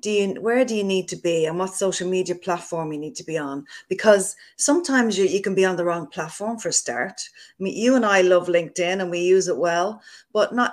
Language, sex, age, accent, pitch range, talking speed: English, female, 30-49, Irish, 175-215 Hz, 240 wpm